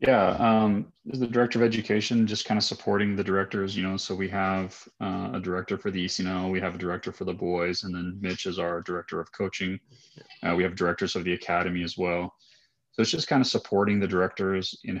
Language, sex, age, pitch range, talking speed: English, male, 30-49, 90-100 Hz, 225 wpm